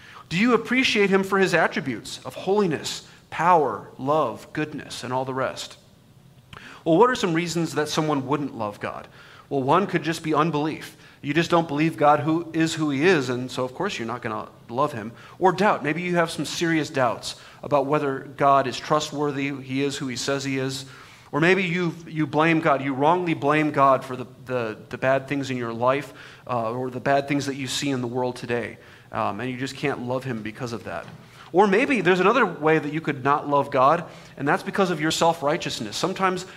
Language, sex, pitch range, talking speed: English, male, 135-165 Hz, 215 wpm